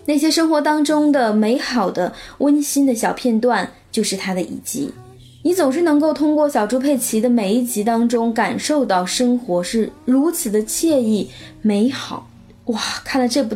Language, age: Chinese, 20-39